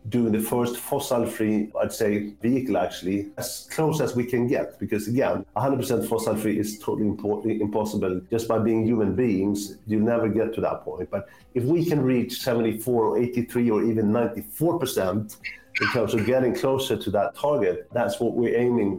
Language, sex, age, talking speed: English, male, 50-69, 175 wpm